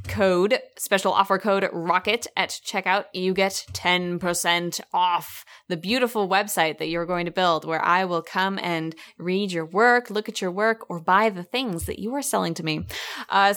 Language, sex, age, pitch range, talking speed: English, female, 20-39, 180-225 Hz, 185 wpm